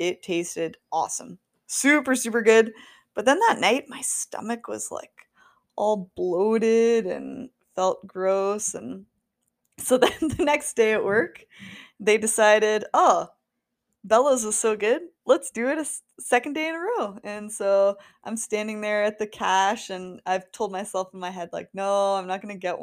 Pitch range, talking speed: 195-280 Hz, 170 wpm